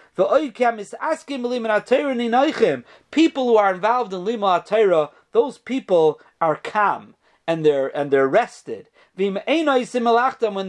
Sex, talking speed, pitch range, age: male, 90 wpm, 175-235 Hz, 40-59